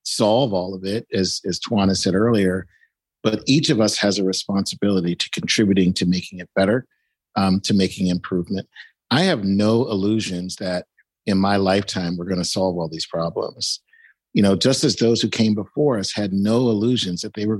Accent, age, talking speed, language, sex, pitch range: American, 50-69, 190 wpm, English, male, 95-115 Hz